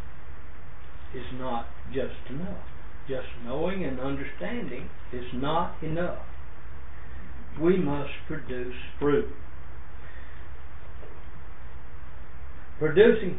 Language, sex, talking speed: English, male, 70 wpm